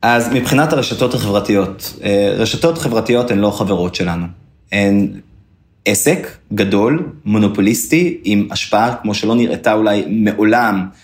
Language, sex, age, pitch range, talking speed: Hebrew, male, 30-49, 105-135 Hz, 115 wpm